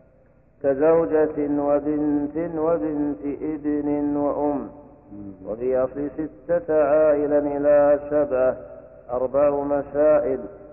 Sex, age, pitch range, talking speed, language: male, 50-69, 145-155 Hz, 75 wpm, Arabic